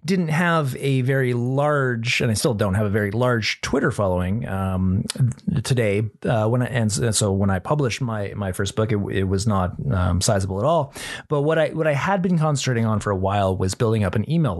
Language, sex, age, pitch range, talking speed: English, male, 30-49, 105-140 Hz, 220 wpm